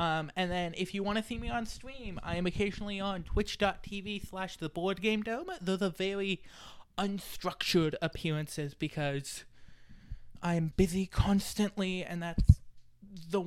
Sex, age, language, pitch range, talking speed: male, 20-39, English, 160-195 Hz, 145 wpm